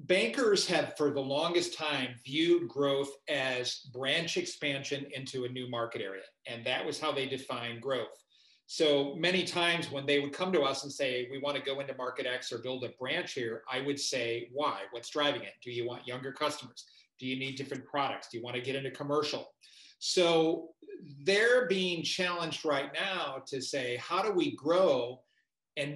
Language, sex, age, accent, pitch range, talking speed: English, male, 40-59, American, 135-155 Hz, 190 wpm